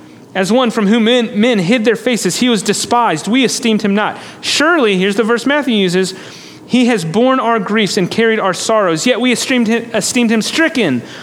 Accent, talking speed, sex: American, 200 wpm, male